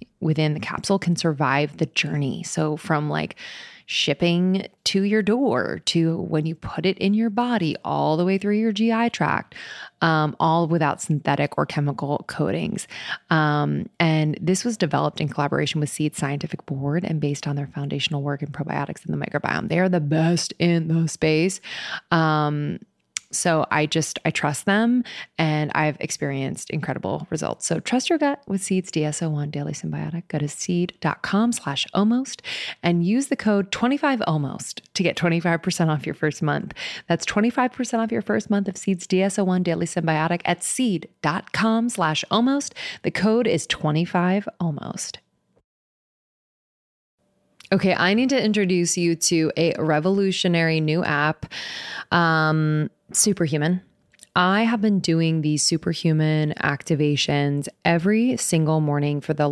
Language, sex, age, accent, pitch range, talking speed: English, female, 20-39, American, 150-195 Hz, 145 wpm